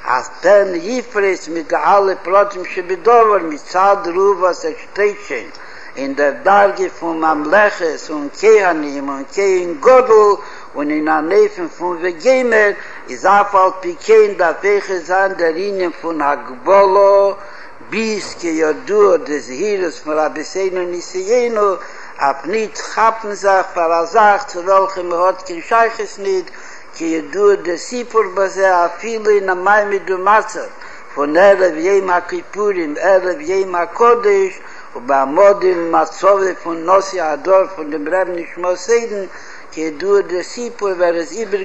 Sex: male